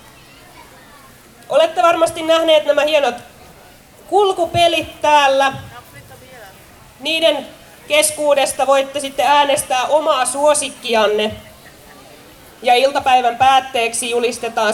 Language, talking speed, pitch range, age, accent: Finnish, 75 wpm, 235-300 Hz, 30-49, native